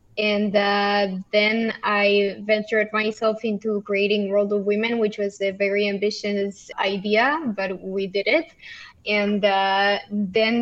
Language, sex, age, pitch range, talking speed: English, female, 10-29, 205-230 Hz, 135 wpm